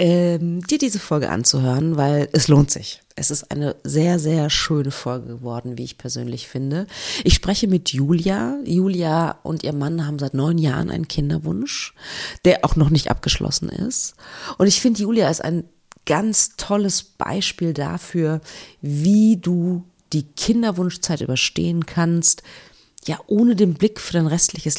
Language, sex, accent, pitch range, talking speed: German, female, German, 150-195 Hz, 155 wpm